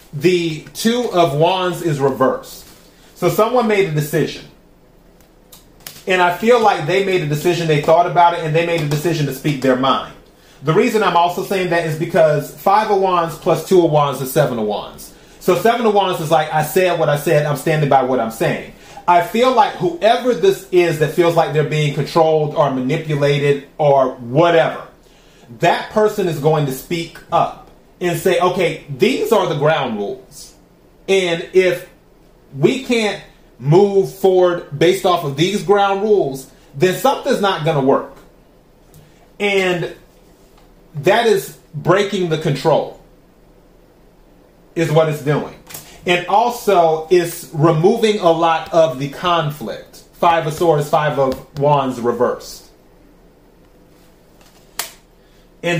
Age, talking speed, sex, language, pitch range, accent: 30-49, 155 wpm, male, English, 150-185 Hz, American